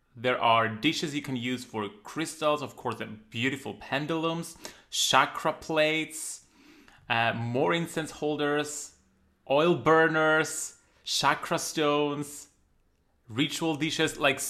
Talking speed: 110 wpm